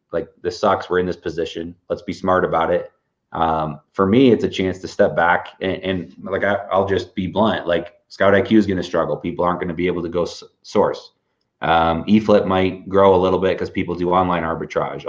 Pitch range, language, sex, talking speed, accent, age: 85-95 Hz, English, male, 225 wpm, American, 30-49